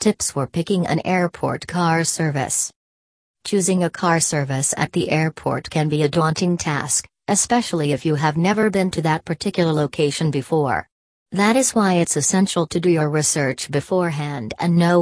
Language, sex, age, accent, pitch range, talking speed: English, female, 40-59, American, 150-180 Hz, 170 wpm